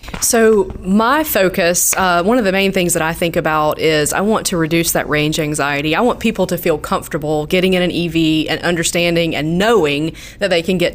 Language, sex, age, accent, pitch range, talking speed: English, female, 20-39, American, 165-195 Hz, 215 wpm